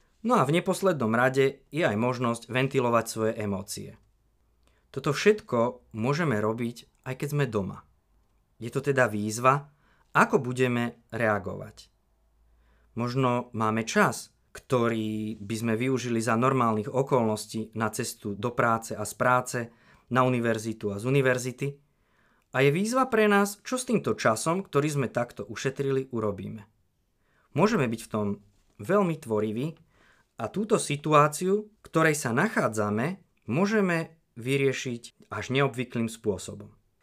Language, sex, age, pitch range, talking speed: Slovak, male, 20-39, 110-160 Hz, 130 wpm